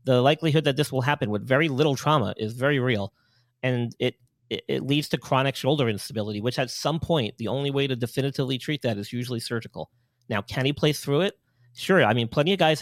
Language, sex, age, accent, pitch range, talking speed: English, male, 40-59, American, 120-155 Hz, 225 wpm